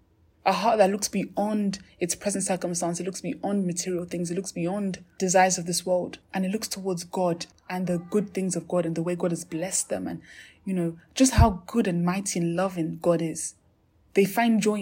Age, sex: 20-39, female